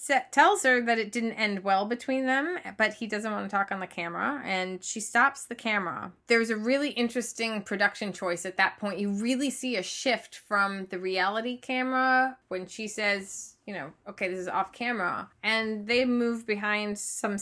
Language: English